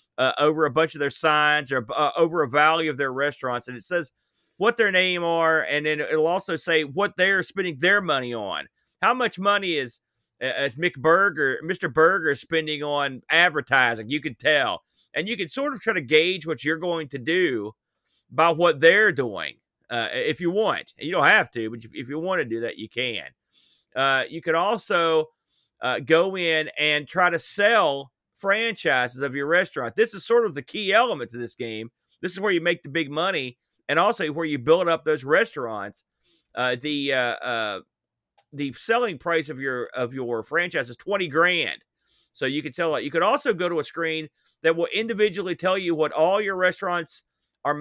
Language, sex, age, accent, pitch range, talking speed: English, male, 40-59, American, 140-180 Hz, 200 wpm